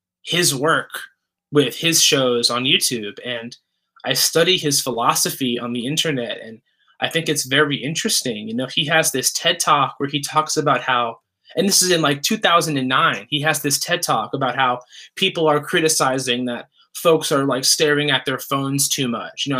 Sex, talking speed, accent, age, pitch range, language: male, 185 wpm, American, 20-39, 130-170 Hz, English